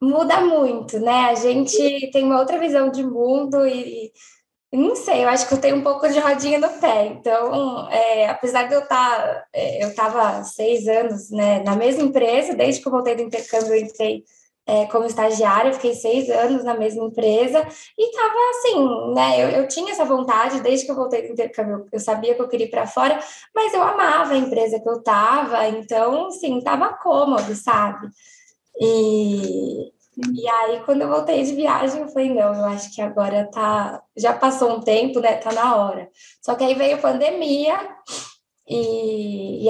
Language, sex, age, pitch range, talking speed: Portuguese, female, 10-29, 220-285 Hz, 195 wpm